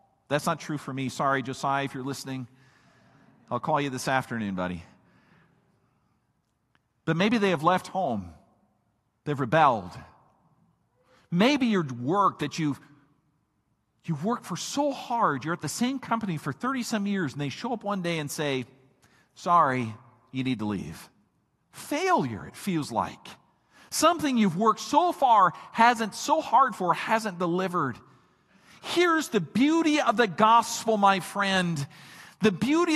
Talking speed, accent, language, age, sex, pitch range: 145 wpm, American, English, 50-69, male, 165-260 Hz